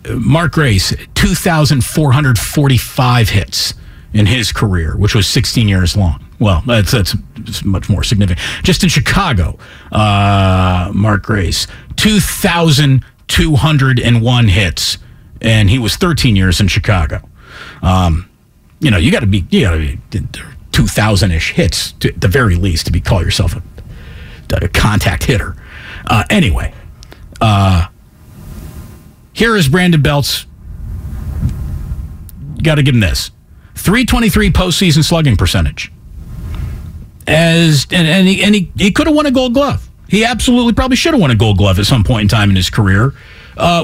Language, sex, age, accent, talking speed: English, male, 50-69, American, 155 wpm